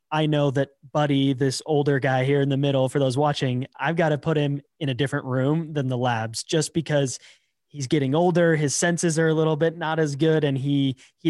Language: English